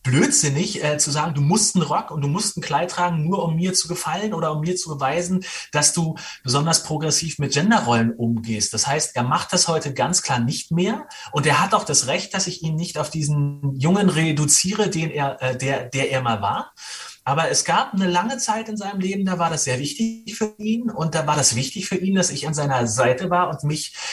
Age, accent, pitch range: 30-49, German, 145-180 Hz